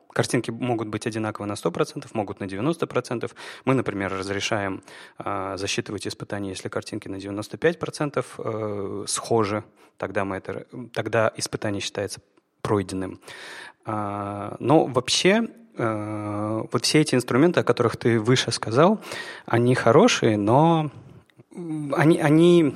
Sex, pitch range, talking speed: male, 105-130 Hz, 115 wpm